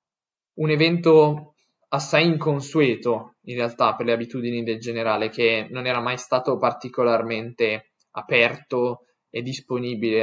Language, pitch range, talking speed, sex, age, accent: Italian, 115-150 Hz, 115 wpm, male, 20-39, native